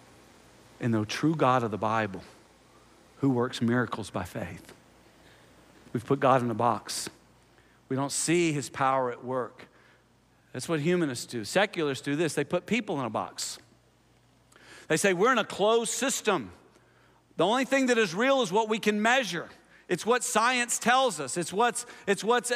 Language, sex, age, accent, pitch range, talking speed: English, male, 50-69, American, 125-205 Hz, 170 wpm